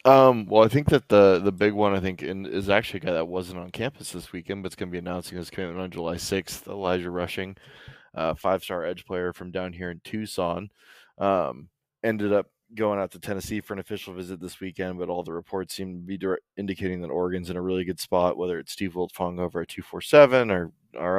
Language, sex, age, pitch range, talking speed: English, male, 20-39, 90-105 Hz, 230 wpm